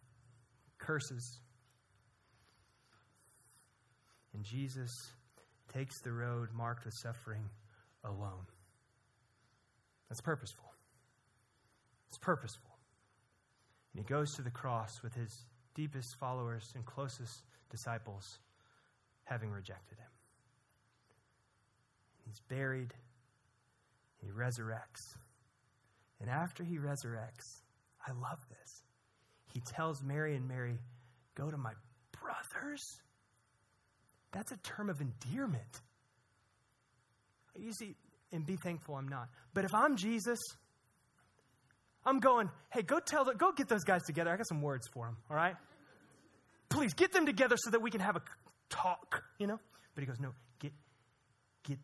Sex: male